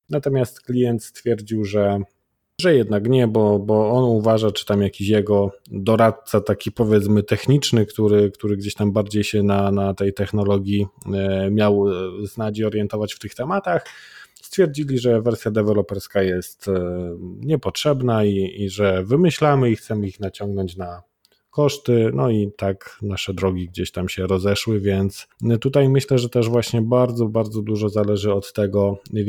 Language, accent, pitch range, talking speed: Polish, native, 100-115 Hz, 150 wpm